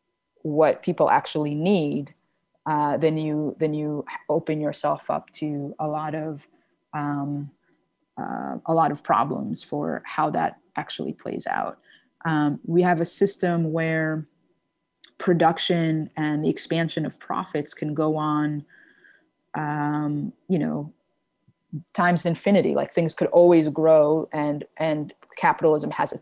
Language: English